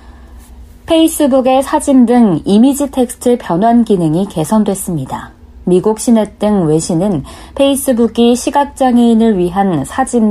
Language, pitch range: Korean, 175-235 Hz